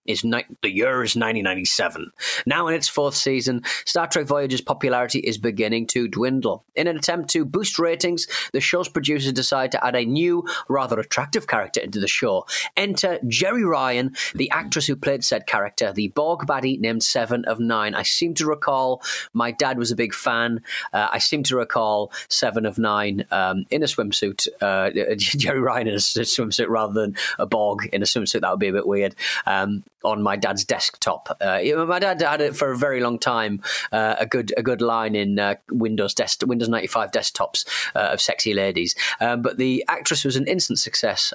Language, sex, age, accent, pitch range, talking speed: English, male, 30-49, British, 115-155 Hz, 195 wpm